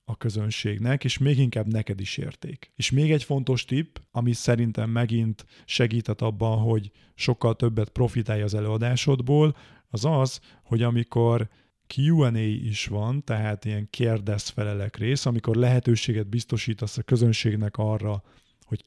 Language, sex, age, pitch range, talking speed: Hungarian, male, 30-49, 110-130 Hz, 135 wpm